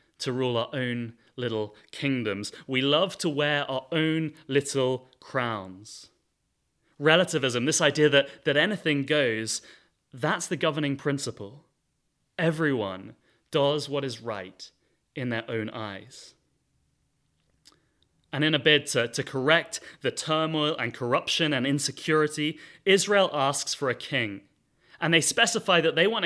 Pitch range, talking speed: 130-175 Hz, 130 wpm